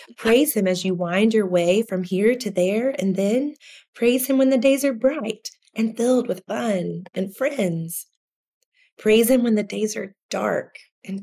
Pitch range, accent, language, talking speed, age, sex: 185-240 Hz, American, English, 180 wpm, 20-39, female